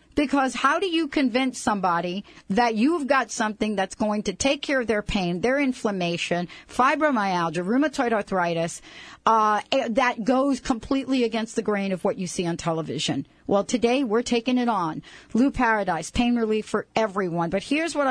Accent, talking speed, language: American, 170 wpm, English